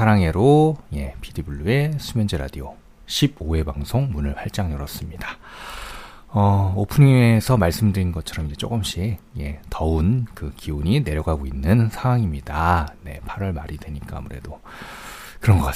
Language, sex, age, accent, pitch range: Korean, male, 40-59, native, 75-110 Hz